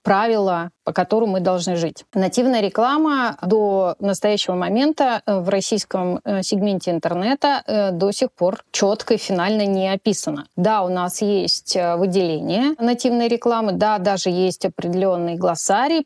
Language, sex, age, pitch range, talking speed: Russian, female, 20-39, 190-240 Hz, 130 wpm